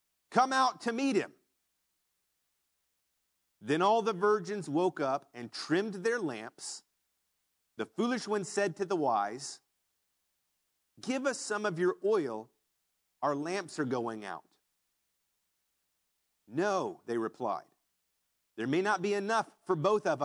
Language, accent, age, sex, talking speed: English, American, 40-59, male, 130 wpm